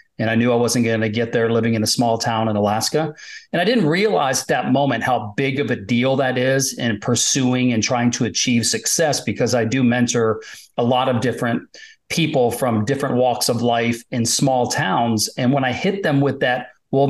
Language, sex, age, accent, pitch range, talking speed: English, male, 40-59, American, 115-140 Hz, 220 wpm